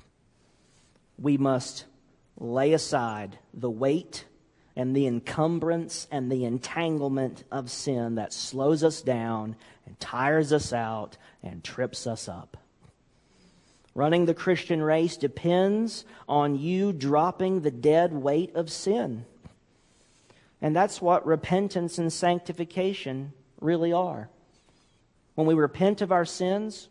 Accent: American